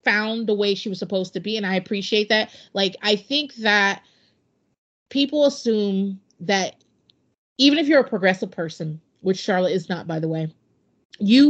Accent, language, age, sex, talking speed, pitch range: American, English, 30-49, female, 170 wpm, 185-245 Hz